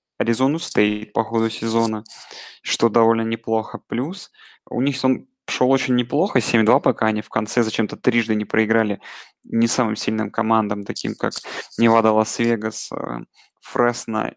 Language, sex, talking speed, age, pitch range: Russian, male, 140 wpm, 20-39, 110-130 Hz